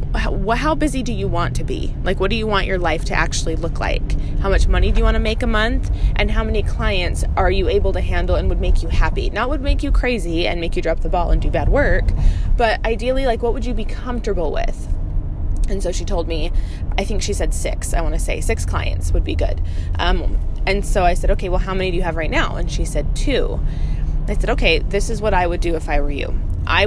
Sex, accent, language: female, American, English